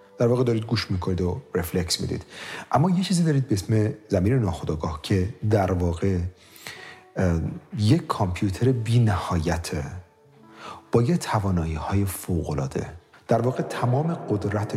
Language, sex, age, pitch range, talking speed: Persian, male, 40-59, 90-125 Hz, 135 wpm